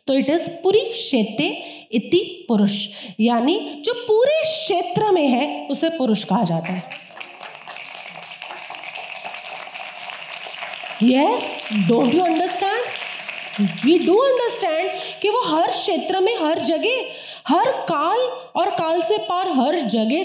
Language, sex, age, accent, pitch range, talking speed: Hindi, female, 30-49, native, 275-370 Hz, 100 wpm